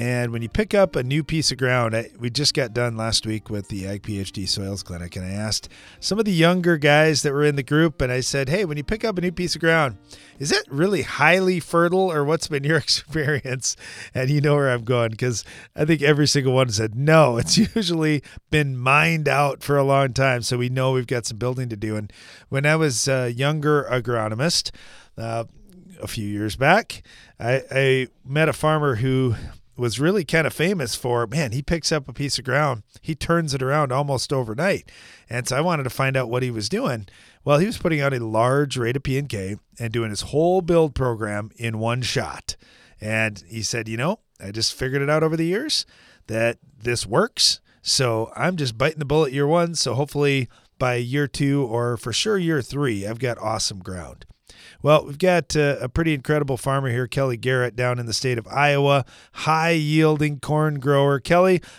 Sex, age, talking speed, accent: male, 30-49, 210 wpm, American